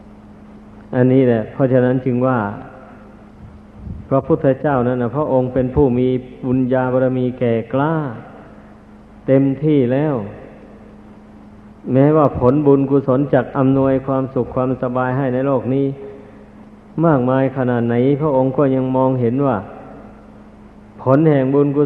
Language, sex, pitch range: Thai, male, 120-135 Hz